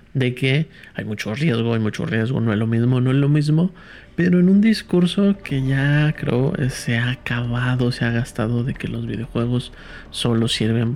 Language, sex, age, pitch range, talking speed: Spanish, male, 50-69, 120-160 Hz, 190 wpm